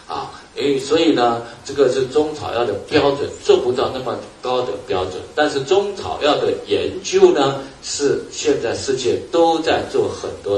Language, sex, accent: Chinese, male, native